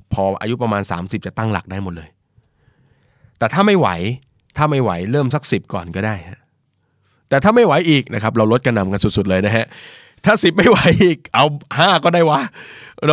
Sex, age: male, 20-39